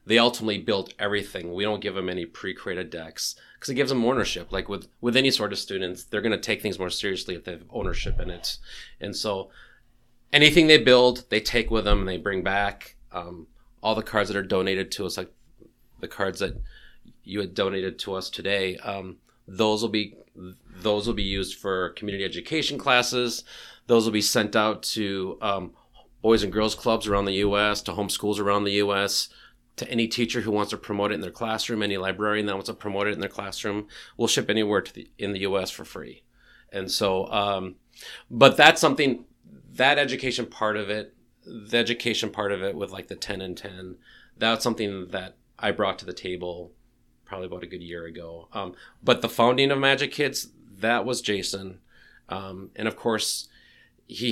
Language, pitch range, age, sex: English, 95-115 Hz, 30-49, male